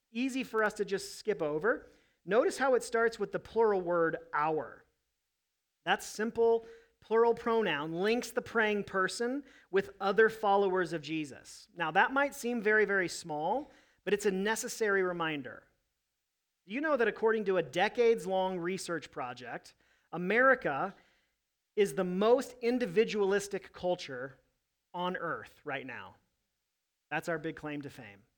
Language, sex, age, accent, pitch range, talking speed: English, male, 40-59, American, 170-230 Hz, 140 wpm